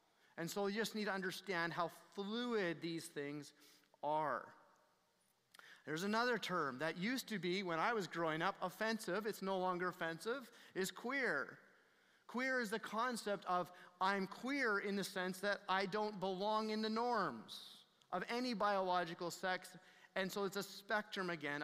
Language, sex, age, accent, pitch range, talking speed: English, male, 30-49, American, 175-215 Hz, 160 wpm